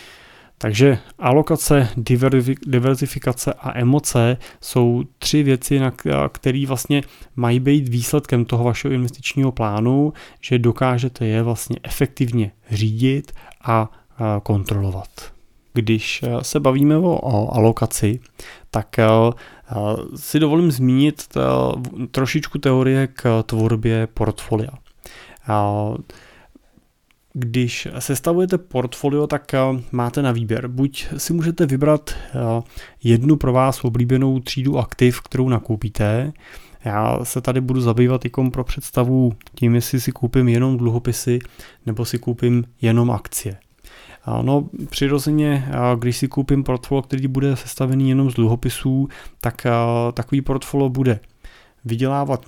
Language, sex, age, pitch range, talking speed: Czech, male, 30-49, 115-135 Hz, 105 wpm